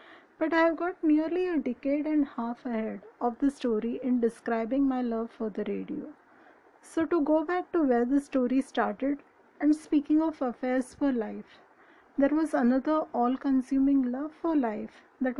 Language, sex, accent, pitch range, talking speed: English, female, Indian, 235-305 Hz, 170 wpm